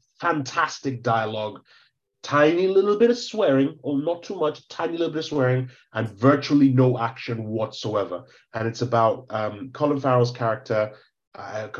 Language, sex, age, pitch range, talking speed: English, male, 30-49, 115-135 Hz, 145 wpm